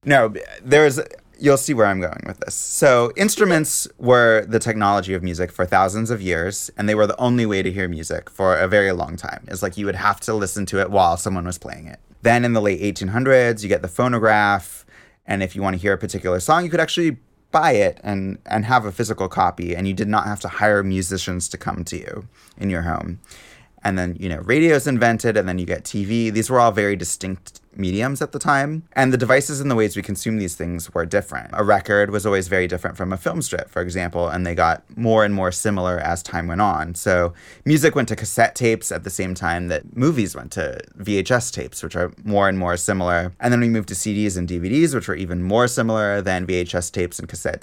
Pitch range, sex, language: 90-110 Hz, male, English